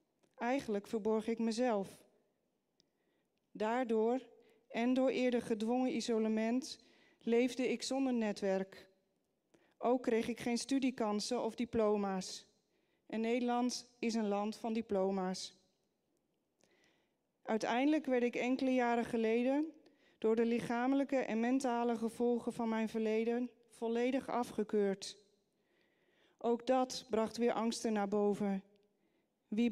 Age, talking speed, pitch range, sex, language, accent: 40-59, 105 wpm, 220-255 Hz, female, Dutch, Dutch